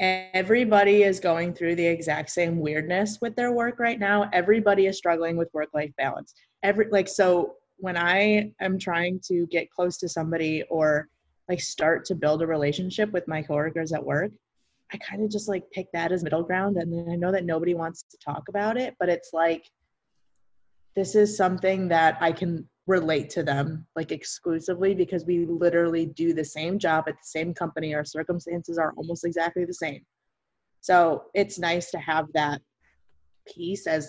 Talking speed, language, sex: 185 wpm, English, female